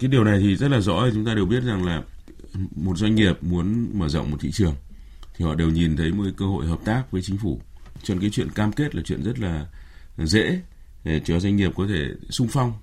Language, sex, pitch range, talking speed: Vietnamese, male, 80-105 Hz, 255 wpm